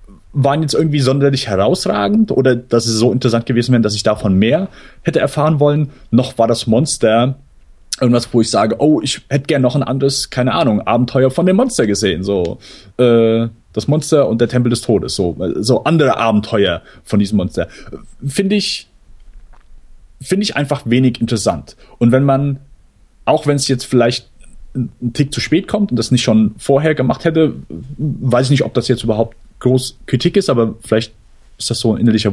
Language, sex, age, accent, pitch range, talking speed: German, male, 30-49, German, 115-145 Hz, 190 wpm